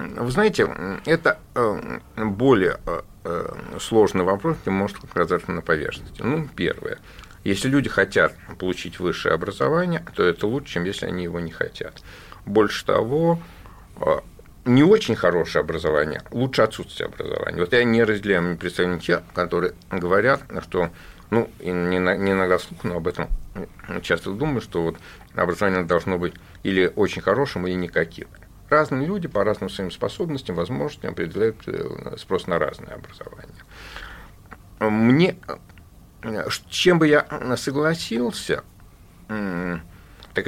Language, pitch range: Russian, 90-125 Hz